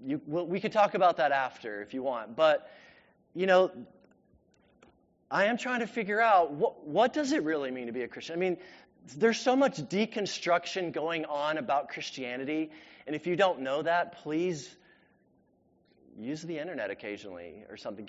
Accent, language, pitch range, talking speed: American, English, 155-205 Hz, 175 wpm